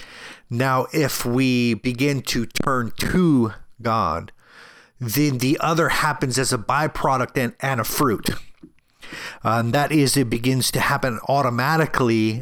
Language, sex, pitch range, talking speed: English, male, 110-135 Hz, 135 wpm